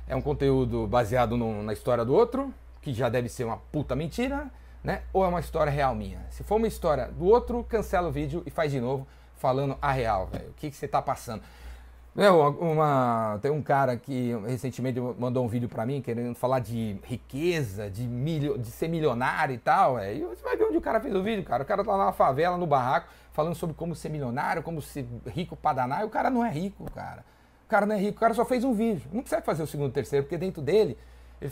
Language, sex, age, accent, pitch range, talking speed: Portuguese, male, 40-59, Brazilian, 125-170 Hz, 240 wpm